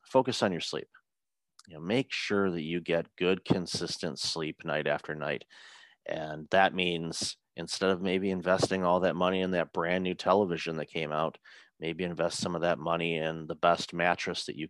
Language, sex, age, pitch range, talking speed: English, male, 30-49, 80-95 Hz, 185 wpm